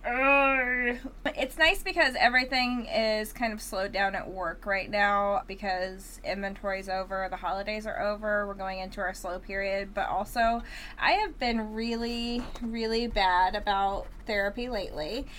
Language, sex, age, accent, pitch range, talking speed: English, female, 20-39, American, 190-230 Hz, 150 wpm